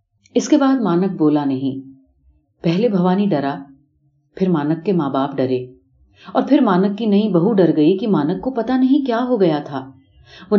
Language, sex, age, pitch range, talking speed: Urdu, female, 40-59, 140-205 Hz, 180 wpm